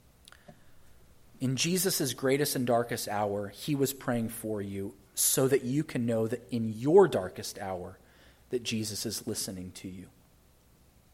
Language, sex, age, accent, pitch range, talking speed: English, male, 30-49, American, 100-170 Hz, 145 wpm